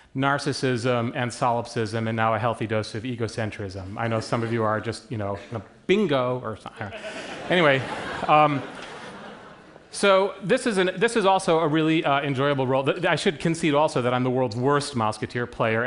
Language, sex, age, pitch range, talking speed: Russian, male, 30-49, 120-155 Hz, 185 wpm